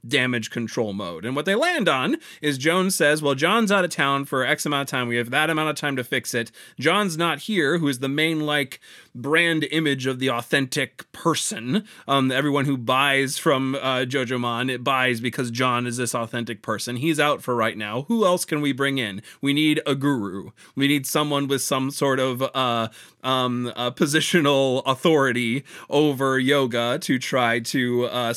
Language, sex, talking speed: English, male, 190 wpm